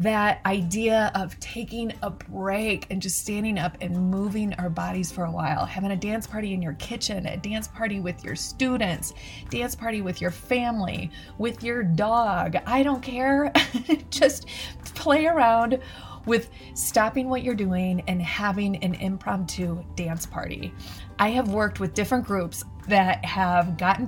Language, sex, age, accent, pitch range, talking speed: English, female, 30-49, American, 185-245 Hz, 160 wpm